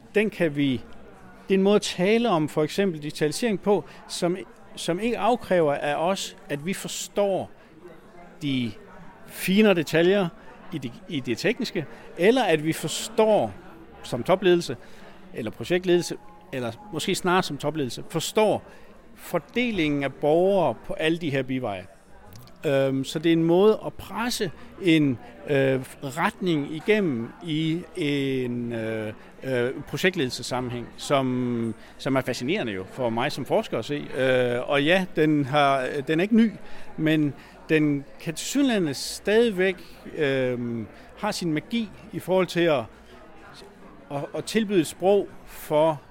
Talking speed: 130 wpm